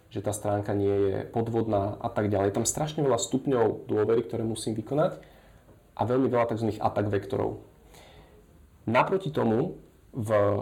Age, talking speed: 30-49, 155 wpm